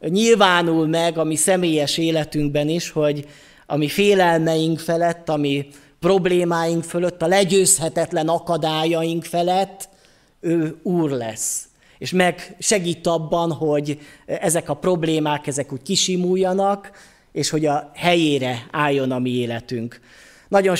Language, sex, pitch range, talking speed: Hungarian, male, 150-180 Hz, 125 wpm